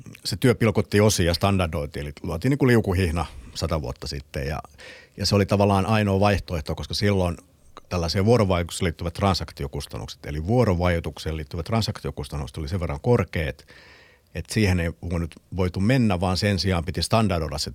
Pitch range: 80-100 Hz